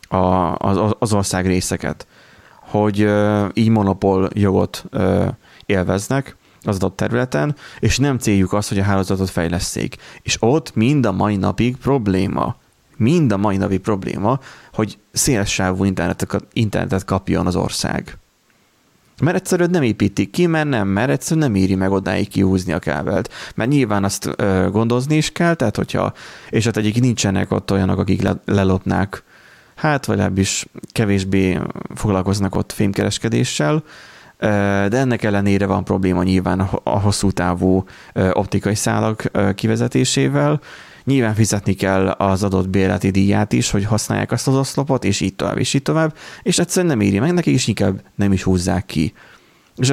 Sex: male